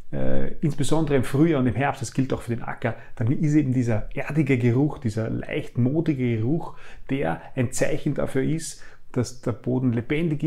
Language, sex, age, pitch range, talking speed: German, male, 30-49, 120-145 Hz, 180 wpm